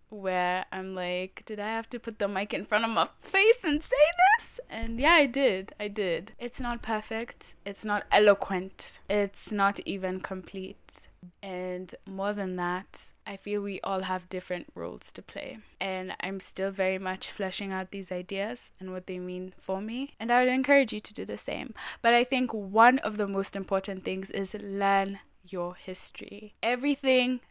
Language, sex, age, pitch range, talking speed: English, female, 10-29, 185-215 Hz, 185 wpm